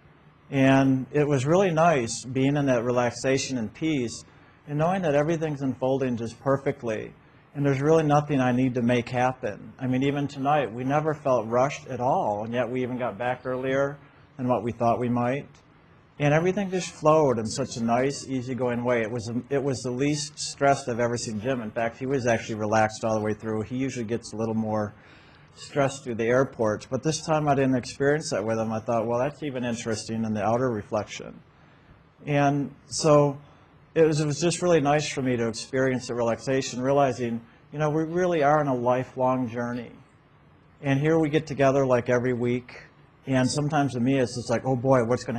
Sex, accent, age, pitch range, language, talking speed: male, American, 50-69, 120-140 Hz, English, 200 wpm